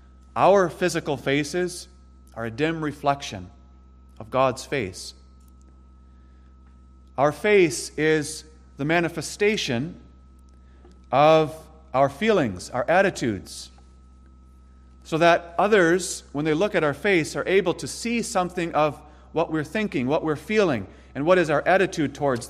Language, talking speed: English, 125 wpm